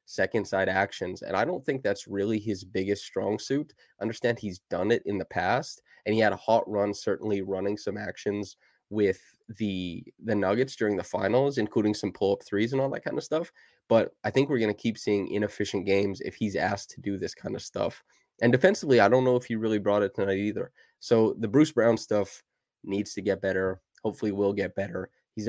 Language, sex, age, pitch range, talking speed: English, male, 20-39, 95-115 Hz, 215 wpm